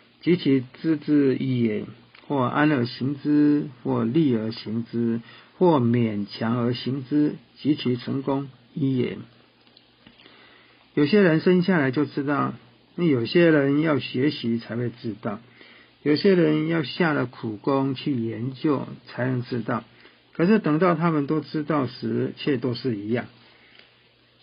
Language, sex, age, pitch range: Chinese, male, 50-69, 120-155 Hz